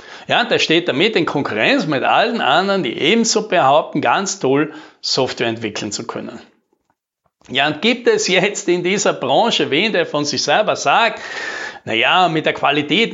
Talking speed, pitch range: 175 wpm, 155-230 Hz